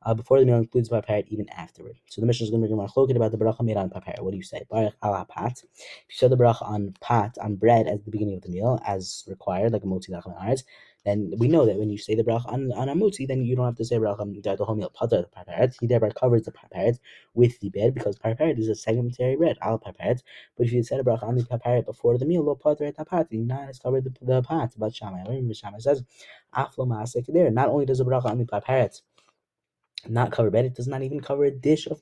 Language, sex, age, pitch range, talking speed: English, male, 20-39, 110-135 Hz, 270 wpm